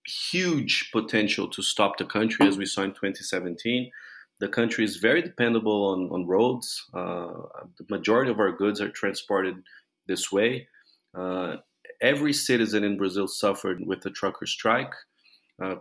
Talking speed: 150 wpm